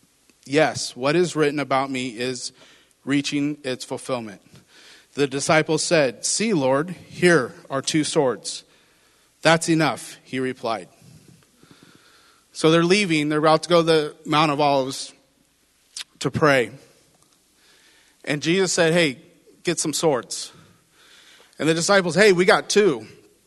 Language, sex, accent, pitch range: English, male, American, 150-195 Hz